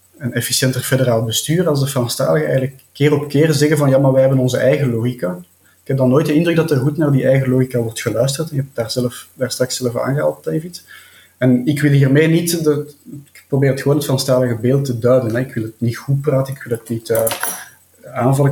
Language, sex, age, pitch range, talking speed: Dutch, male, 30-49, 120-150 Hz, 235 wpm